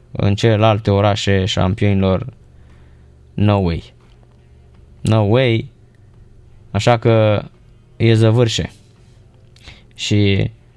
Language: Romanian